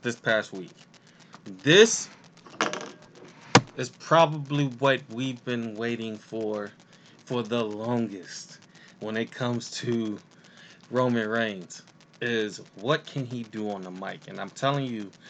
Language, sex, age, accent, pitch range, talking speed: English, male, 20-39, American, 115-150 Hz, 125 wpm